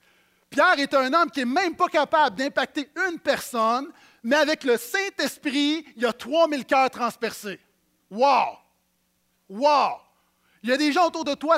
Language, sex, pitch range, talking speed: French, male, 180-280 Hz, 165 wpm